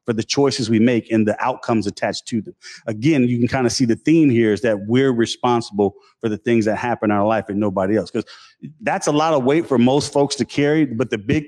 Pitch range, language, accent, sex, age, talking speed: 110-135 Hz, English, American, male, 40-59, 250 wpm